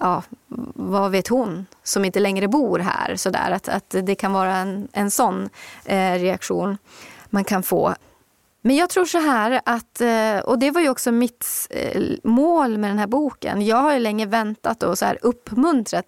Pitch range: 195-240 Hz